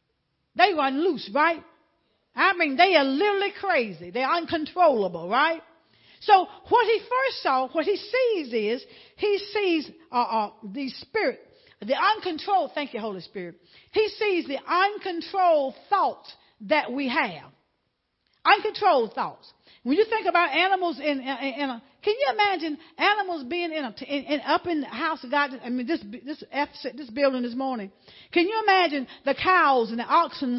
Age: 50-69